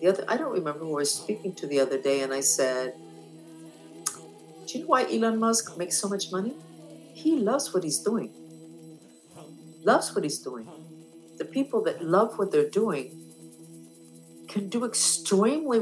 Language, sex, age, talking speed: English, female, 50-69, 165 wpm